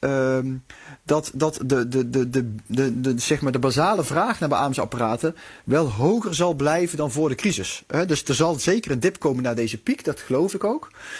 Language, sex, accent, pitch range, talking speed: English, male, Dutch, 130-160 Hz, 155 wpm